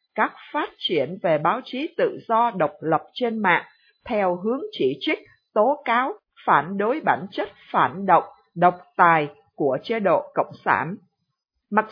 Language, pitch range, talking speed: Vietnamese, 175-245 Hz, 160 wpm